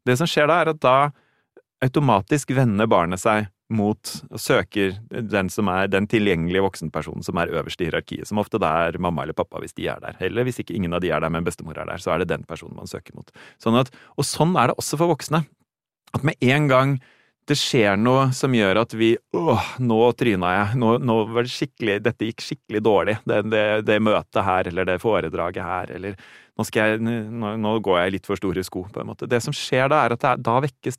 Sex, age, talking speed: male, 30-49, 240 wpm